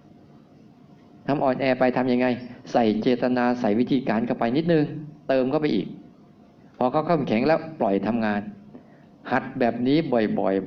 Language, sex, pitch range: Thai, male, 120-150 Hz